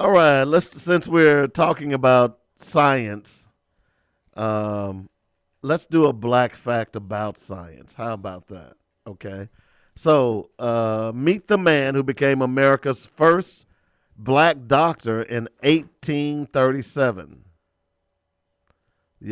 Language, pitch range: English, 105-155 Hz